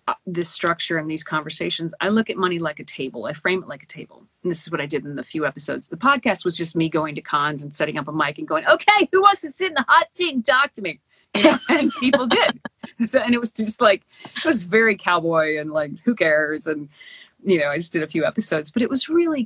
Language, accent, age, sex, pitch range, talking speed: English, American, 40-59, female, 165-235 Hz, 275 wpm